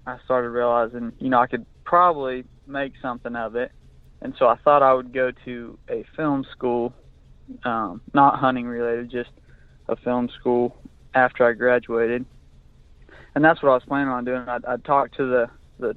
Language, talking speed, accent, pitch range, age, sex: English, 180 wpm, American, 120-130 Hz, 20-39, male